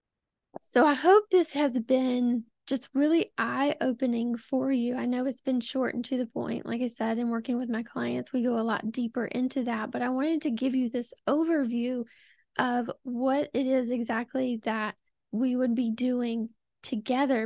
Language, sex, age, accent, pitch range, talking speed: English, female, 10-29, American, 240-275 Hz, 185 wpm